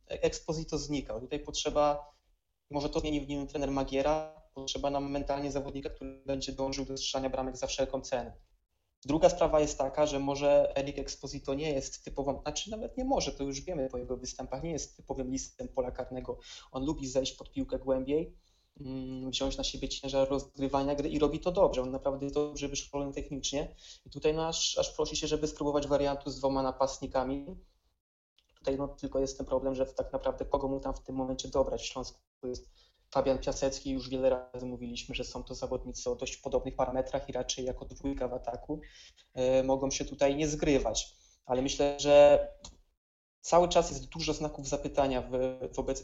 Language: Polish